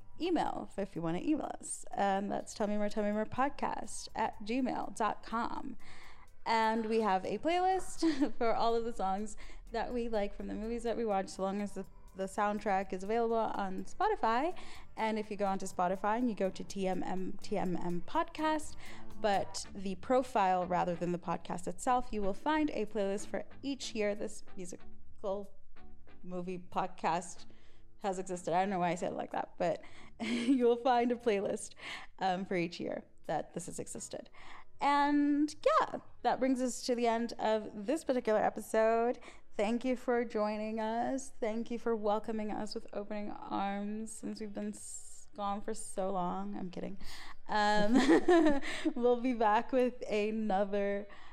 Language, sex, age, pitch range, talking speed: English, female, 10-29, 195-245 Hz, 170 wpm